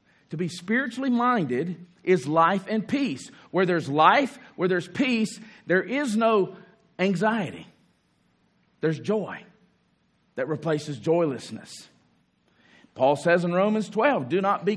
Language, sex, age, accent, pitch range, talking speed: English, male, 50-69, American, 160-225 Hz, 125 wpm